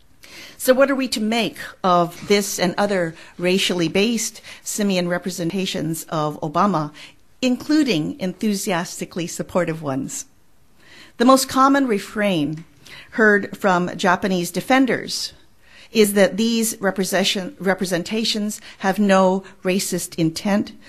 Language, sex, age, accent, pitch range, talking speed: English, female, 50-69, American, 165-215 Hz, 105 wpm